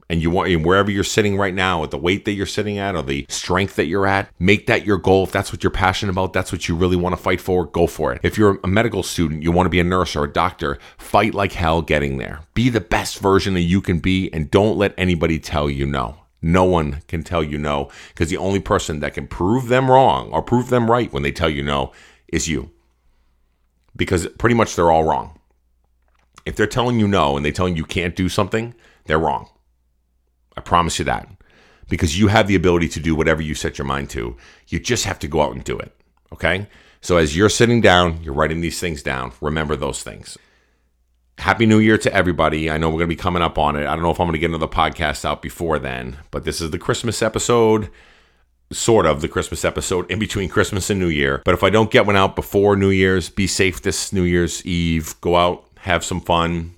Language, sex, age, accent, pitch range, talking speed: English, male, 40-59, American, 80-95 Hz, 240 wpm